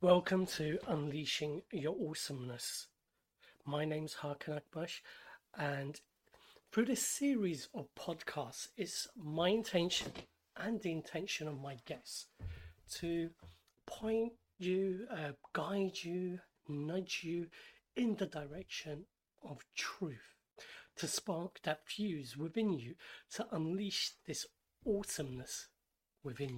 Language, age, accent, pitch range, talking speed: English, 40-59, British, 155-195 Hz, 110 wpm